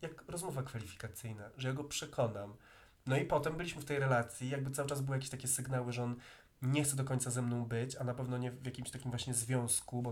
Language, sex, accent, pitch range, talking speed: Polish, male, native, 120-140 Hz, 235 wpm